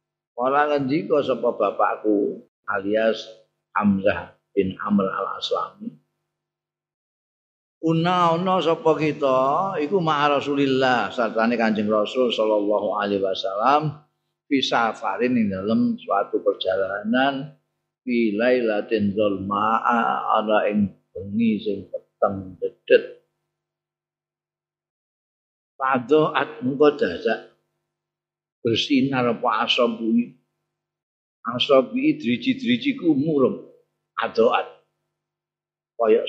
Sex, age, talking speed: male, 50-69, 80 wpm